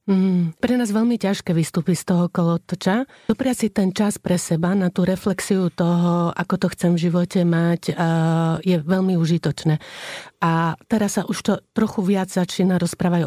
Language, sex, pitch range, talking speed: Slovak, female, 170-195 Hz, 165 wpm